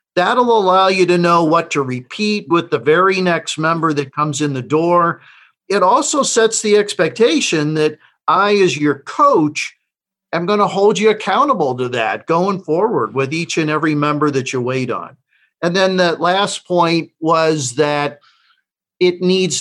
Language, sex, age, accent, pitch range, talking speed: English, male, 50-69, American, 150-190 Hz, 170 wpm